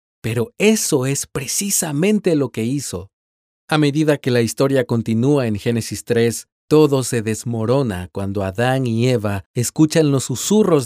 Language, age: Spanish, 40-59